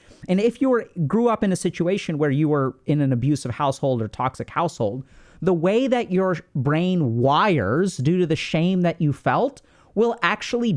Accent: American